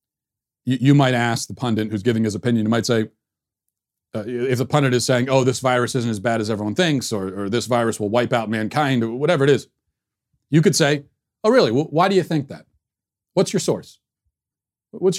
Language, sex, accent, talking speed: English, male, American, 210 wpm